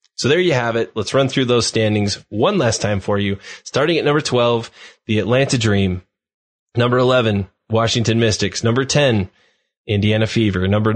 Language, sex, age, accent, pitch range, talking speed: English, male, 20-39, American, 105-135 Hz, 170 wpm